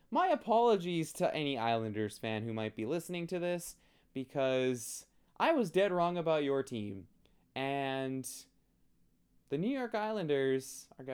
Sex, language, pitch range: male, English, 110-160 Hz